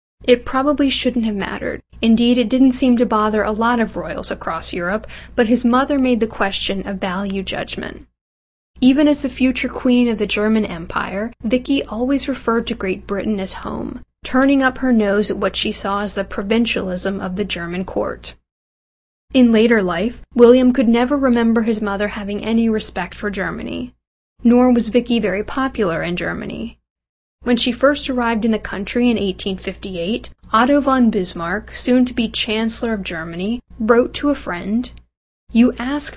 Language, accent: English, American